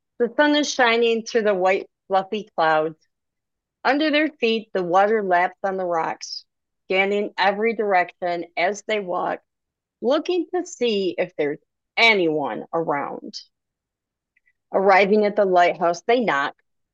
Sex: female